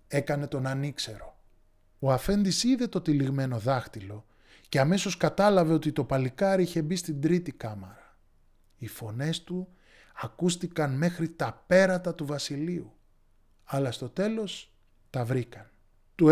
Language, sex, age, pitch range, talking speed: Greek, male, 20-39, 110-175 Hz, 130 wpm